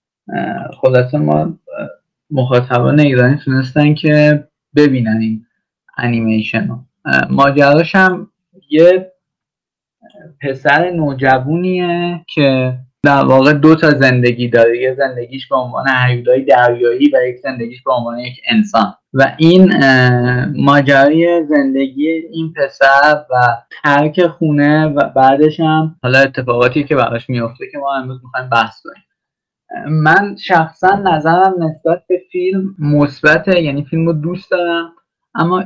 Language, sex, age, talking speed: Persian, male, 20-39, 115 wpm